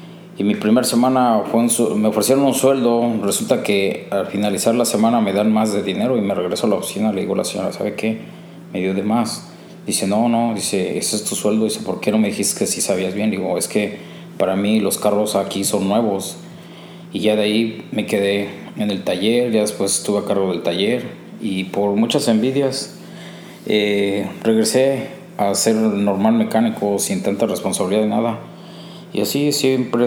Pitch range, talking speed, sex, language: 100-135 Hz, 200 wpm, male, Spanish